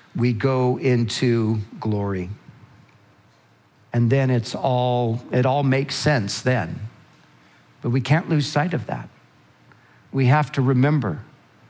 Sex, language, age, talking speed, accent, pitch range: male, English, 50-69, 125 wpm, American, 120-150 Hz